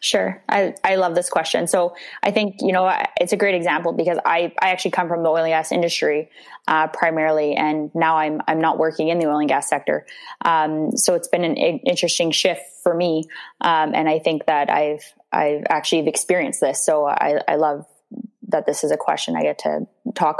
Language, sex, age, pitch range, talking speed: English, female, 20-39, 160-190 Hz, 215 wpm